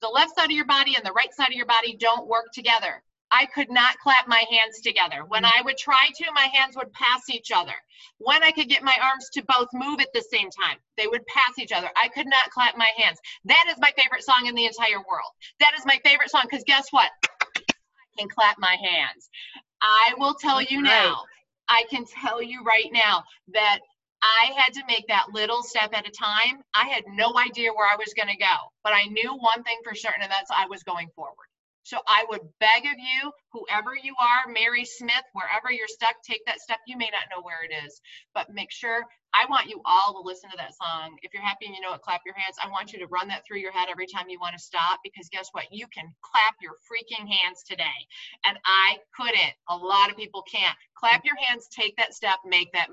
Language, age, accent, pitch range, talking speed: English, 40-59, American, 200-260 Hz, 240 wpm